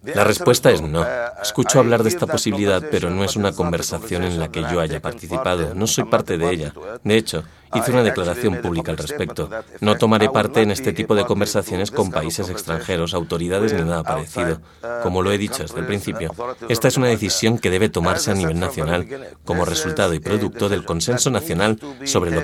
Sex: male